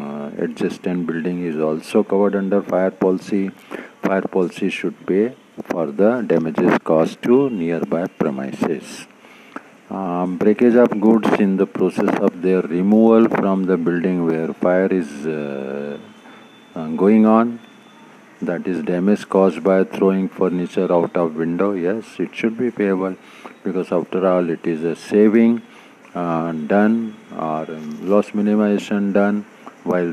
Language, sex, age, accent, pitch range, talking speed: Hindi, male, 50-69, native, 85-105 Hz, 135 wpm